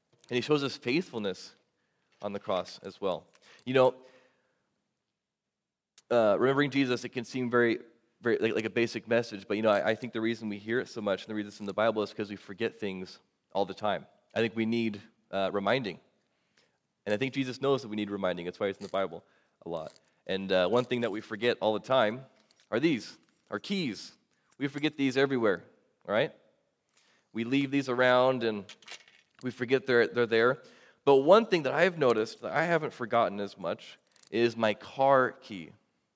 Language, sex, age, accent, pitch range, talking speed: English, male, 20-39, American, 110-130 Hz, 200 wpm